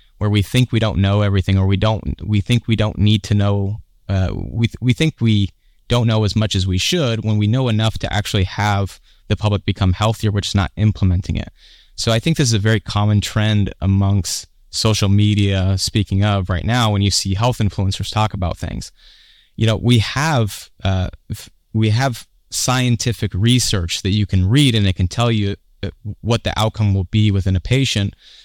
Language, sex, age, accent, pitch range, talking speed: English, male, 20-39, American, 95-110 Hz, 205 wpm